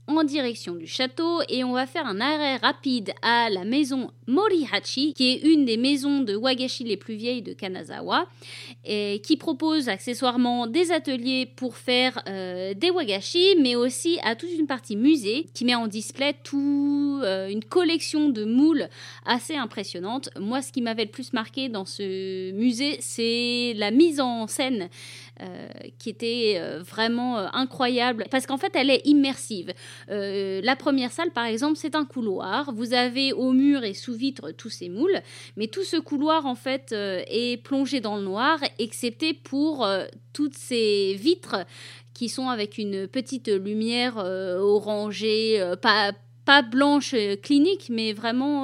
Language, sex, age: French, female, 30-49